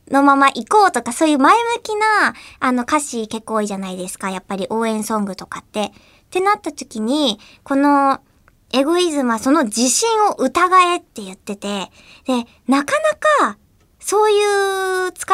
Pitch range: 220-335 Hz